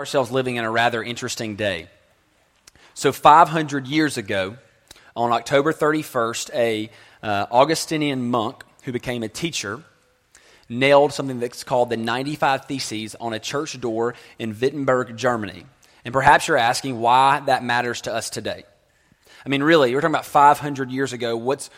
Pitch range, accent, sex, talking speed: 125-155 Hz, American, male, 155 wpm